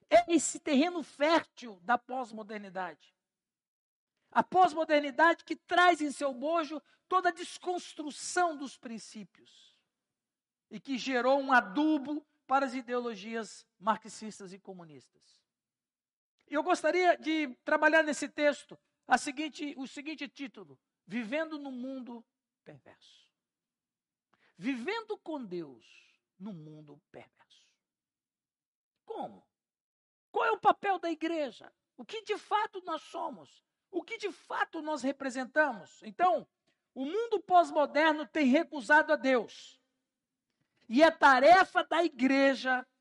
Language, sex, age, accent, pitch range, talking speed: Portuguese, male, 60-79, Brazilian, 255-320 Hz, 115 wpm